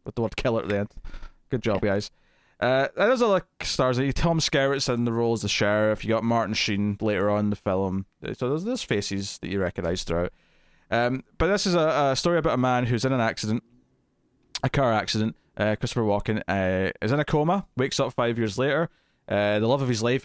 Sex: male